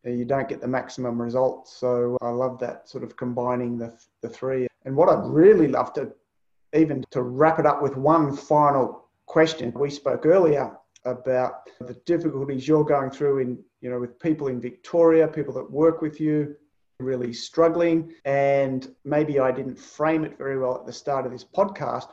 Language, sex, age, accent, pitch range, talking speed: English, male, 30-49, Australian, 125-150 Hz, 185 wpm